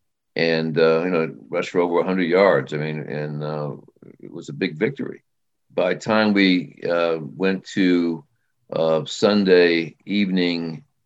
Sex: male